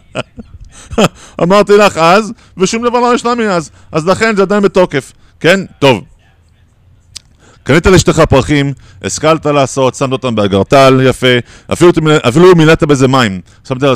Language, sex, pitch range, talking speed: Hebrew, male, 115-170 Hz, 140 wpm